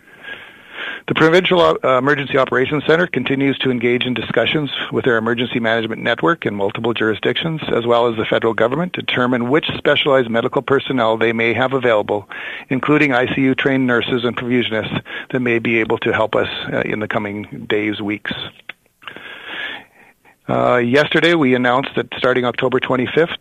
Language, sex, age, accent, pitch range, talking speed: English, male, 50-69, American, 115-140 Hz, 155 wpm